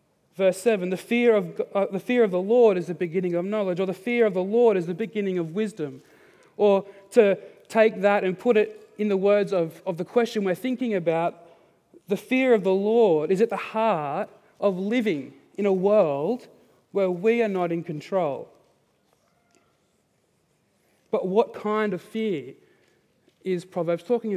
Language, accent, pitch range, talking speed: English, Australian, 185-225 Hz, 170 wpm